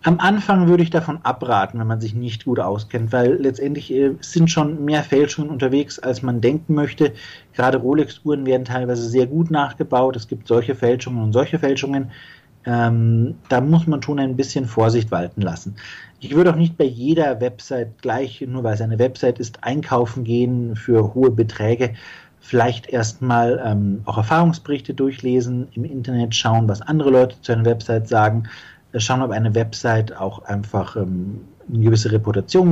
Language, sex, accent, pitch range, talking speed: German, male, German, 110-145 Hz, 170 wpm